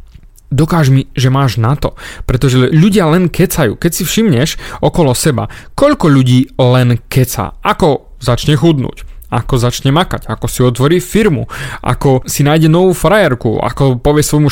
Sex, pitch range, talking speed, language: male, 125-165 Hz, 155 wpm, Slovak